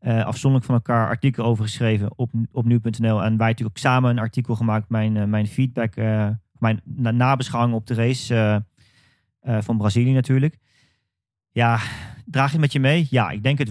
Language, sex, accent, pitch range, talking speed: Dutch, male, Dutch, 115-130 Hz, 195 wpm